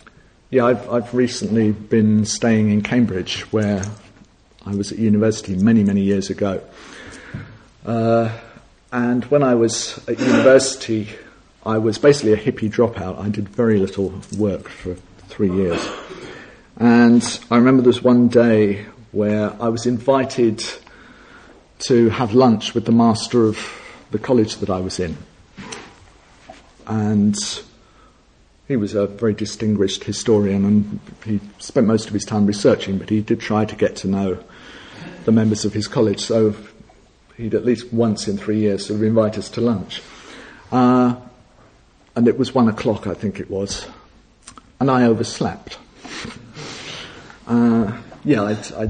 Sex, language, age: male, English, 50-69